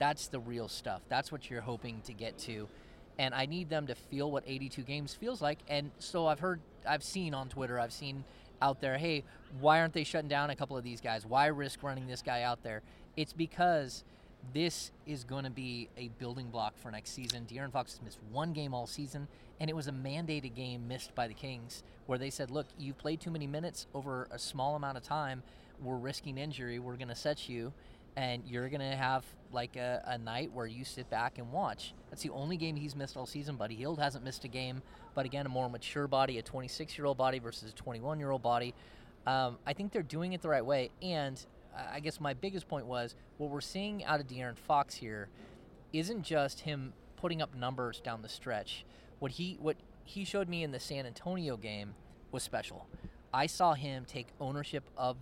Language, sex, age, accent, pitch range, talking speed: English, male, 30-49, American, 120-150 Hz, 215 wpm